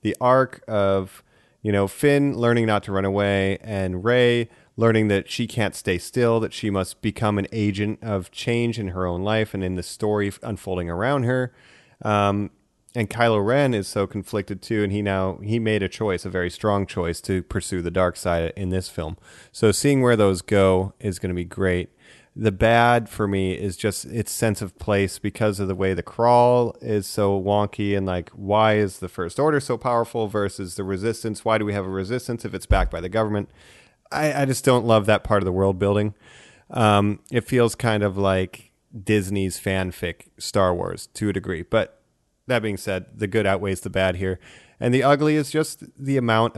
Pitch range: 95-115 Hz